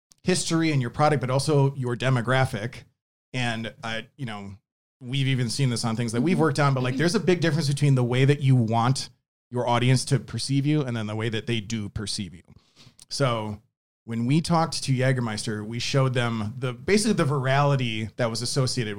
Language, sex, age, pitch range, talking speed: English, male, 30-49, 120-150 Hz, 205 wpm